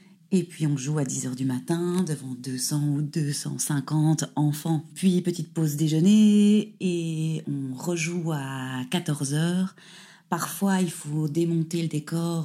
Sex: female